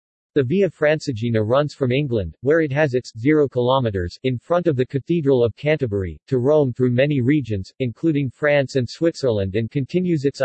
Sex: male